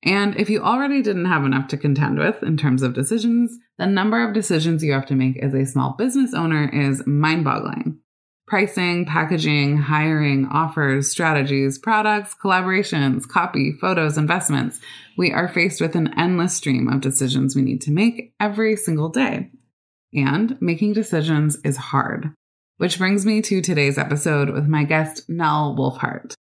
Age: 20-39